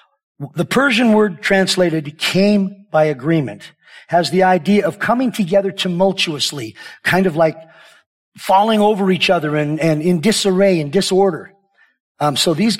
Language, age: English, 50-69